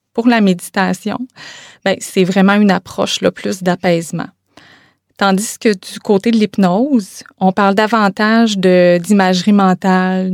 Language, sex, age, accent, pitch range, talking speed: French, female, 20-39, Canadian, 185-215 Hz, 135 wpm